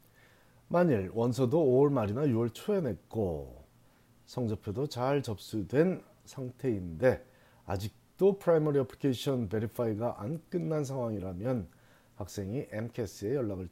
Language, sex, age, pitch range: Korean, male, 40-59, 100-130 Hz